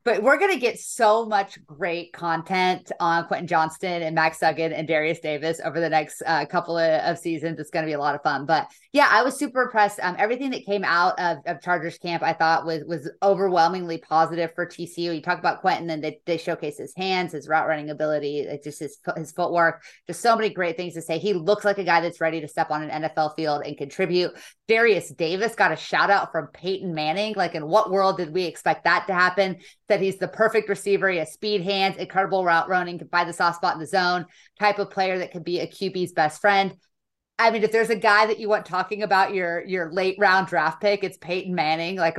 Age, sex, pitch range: 20-39, female, 165-200 Hz